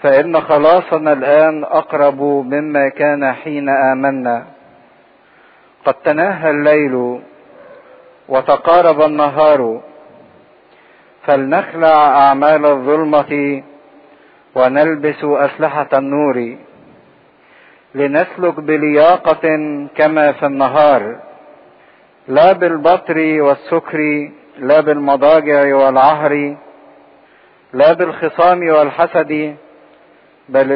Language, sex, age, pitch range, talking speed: English, male, 50-69, 140-155 Hz, 65 wpm